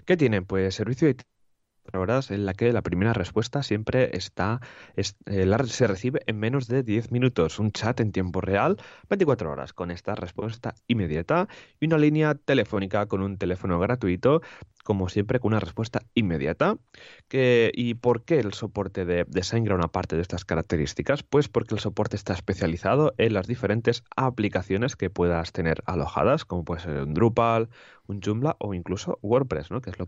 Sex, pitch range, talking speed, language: male, 95-120 Hz, 185 wpm, Spanish